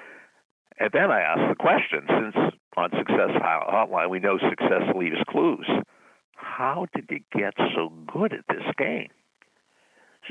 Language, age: English, 60-79